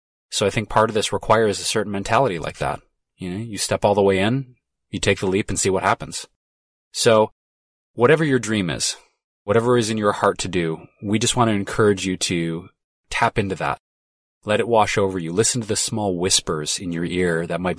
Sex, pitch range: male, 90-105 Hz